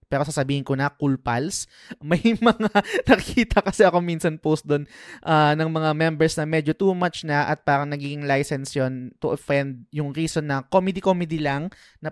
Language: Filipino